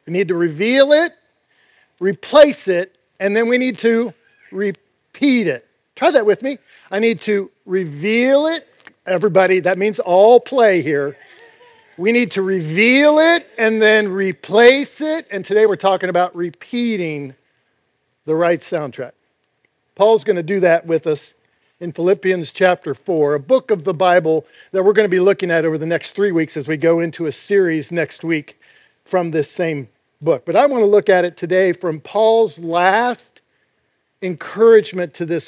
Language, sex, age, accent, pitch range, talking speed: English, male, 50-69, American, 170-225 Hz, 170 wpm